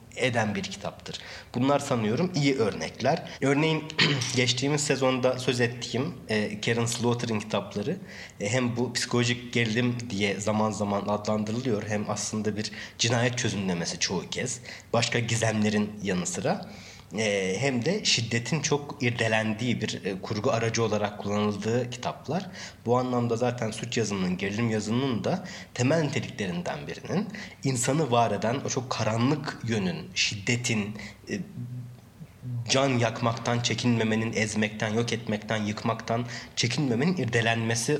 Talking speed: 115 wpm